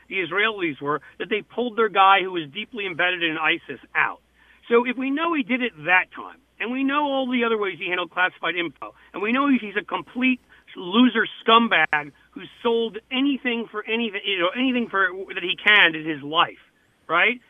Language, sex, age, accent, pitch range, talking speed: English, male, 40-59, American, 175-230 Hz, 200 wpm